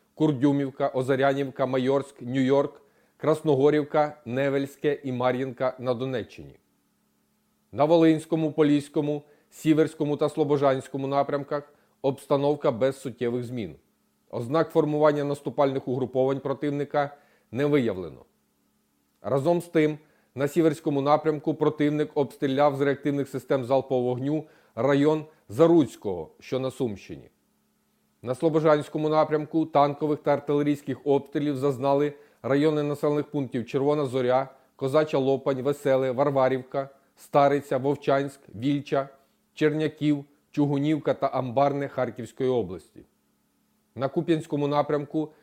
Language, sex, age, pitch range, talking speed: Ukrainian, male, 40-59, 135-150 Hz, 100 wpm